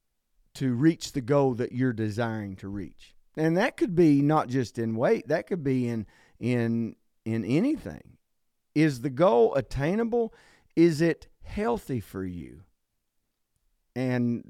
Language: English